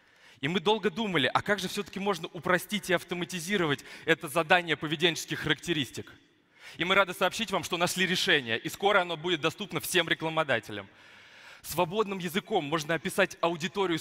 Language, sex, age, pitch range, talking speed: Russian, male, 20-39, 140-180 Hz, 155 wpm